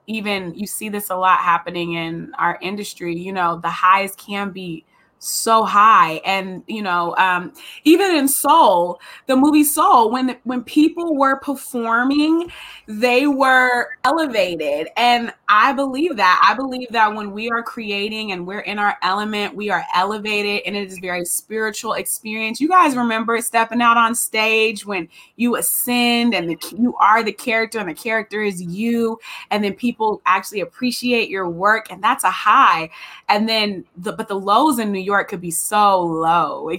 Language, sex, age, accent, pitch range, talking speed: English, female, 20-39, American, 200-245 Hz, 175 wpm